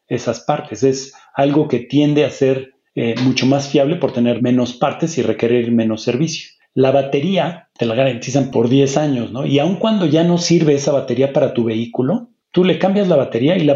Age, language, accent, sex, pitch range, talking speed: 40-59, Spanish, Mexican, male, 120-150 Hz, 205 wpm